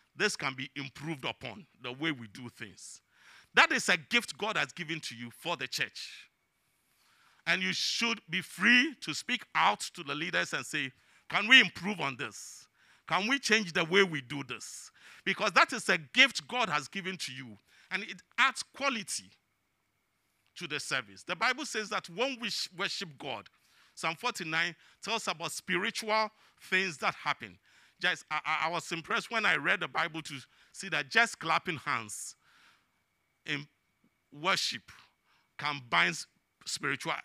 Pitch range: 140-210 Hz